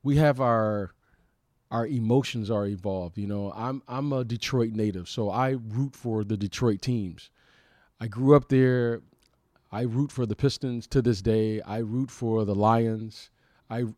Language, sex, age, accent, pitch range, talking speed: English, male, 40-59, American, 110-135 Hz, 170 wpm